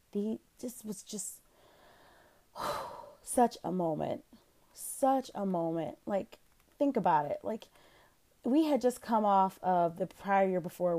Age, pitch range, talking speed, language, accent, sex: 20-39, 180-255 Hz, 130 wpm, English, American, female